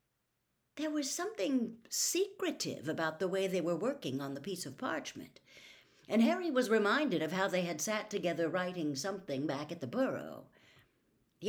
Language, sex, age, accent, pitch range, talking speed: English, female, 60-79, American, 140-215 Hz, 165 wpm